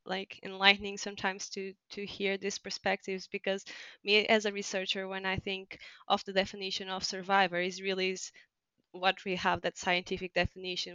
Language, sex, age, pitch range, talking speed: English, female, 20-39, 180-200 Hz, 165 wpm